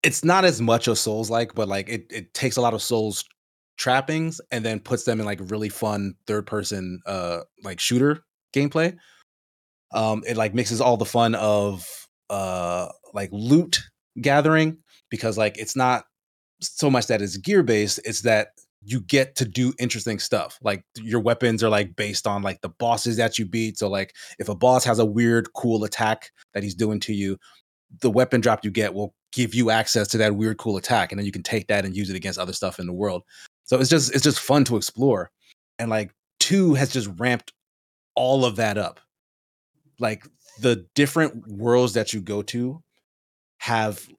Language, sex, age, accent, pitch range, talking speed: English, male, 20-39, American, 105-125 Hz, 195 wpm